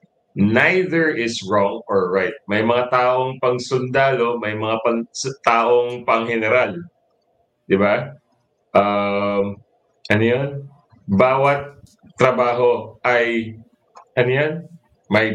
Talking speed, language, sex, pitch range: 100 wpm, English, male, 105-135 Hz